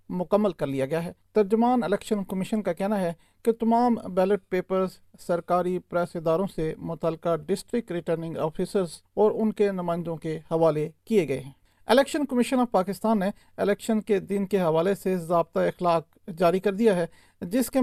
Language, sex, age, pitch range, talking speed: Urdu, male, 40-59, 180-220 Hz, 140 wpm